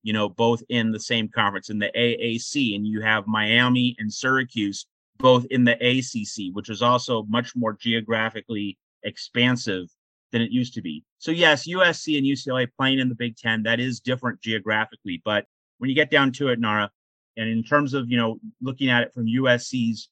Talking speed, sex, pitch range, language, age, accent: 195 wpm, male, 115-140 Hz, English, 30-49, American